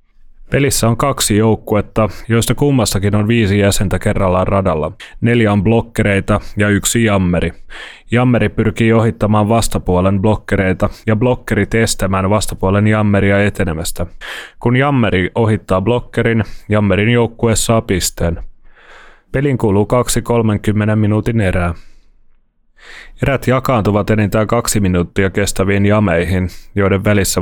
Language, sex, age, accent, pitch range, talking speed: Finnish, male, 30-49, native, 95-115 Hz, 110 wpm